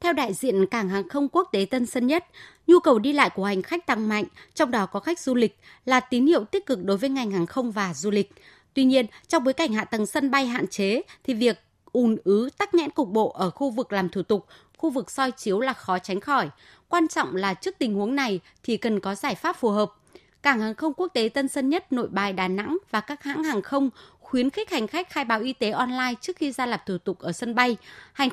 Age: 20-39